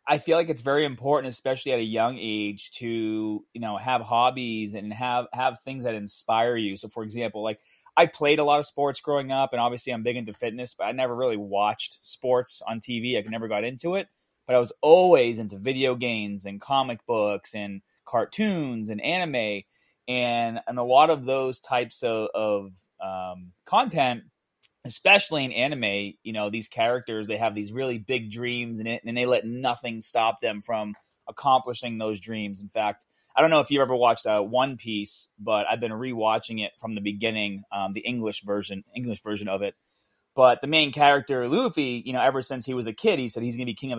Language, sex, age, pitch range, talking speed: English, male, 30-49, 105-125 Hz, 205 wpm